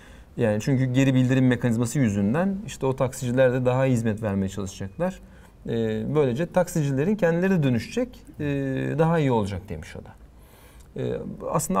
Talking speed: 155 wpm